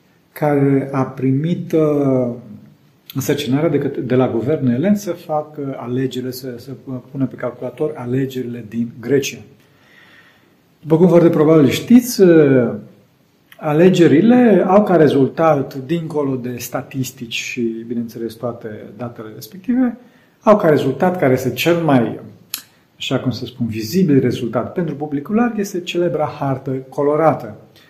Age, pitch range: 40-59, 125-170 Hz